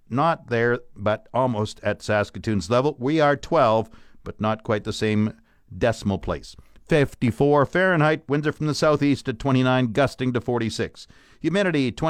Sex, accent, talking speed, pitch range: male, American, 150 wpm, 115-160 Hz